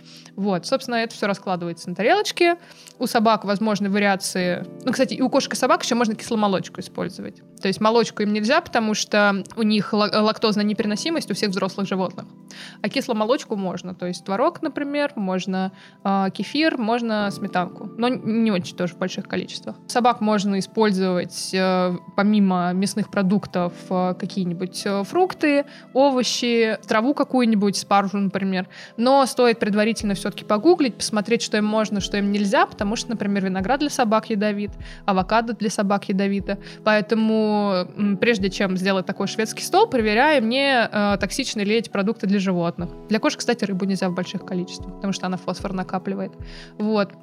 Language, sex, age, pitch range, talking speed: Russian, female, 20-39, 195-240 Hz, 155 wpm